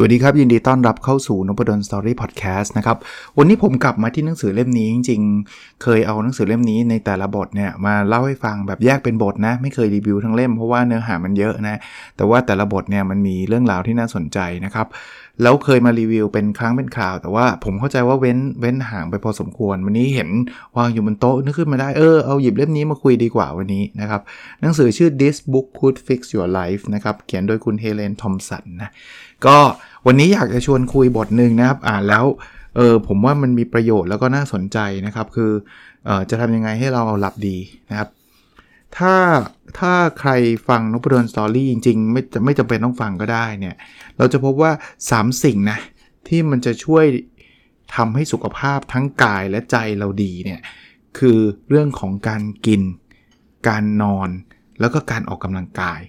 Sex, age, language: male, 20-39, Thai